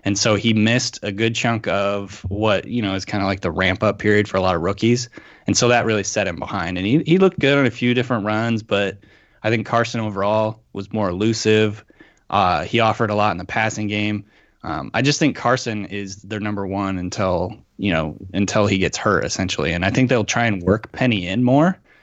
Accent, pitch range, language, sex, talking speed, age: American, 95-115 Hz, English, male, 230 wpm, 20-39